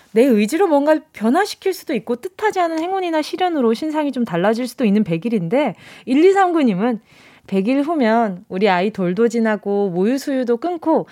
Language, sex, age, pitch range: Korean, female, 20-39, 200-285 Hz